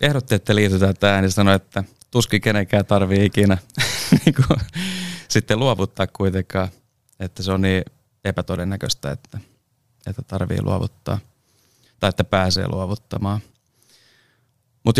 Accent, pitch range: native, 95-125 Hz